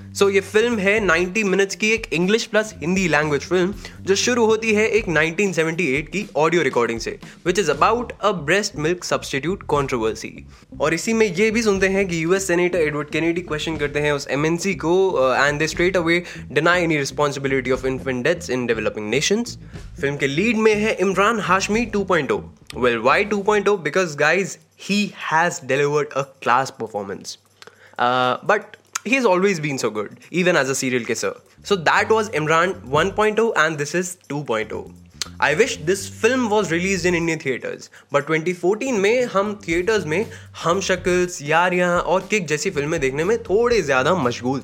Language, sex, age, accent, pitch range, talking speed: Hindi, male, 20-39, native, 145-200 Hz, 160 wpm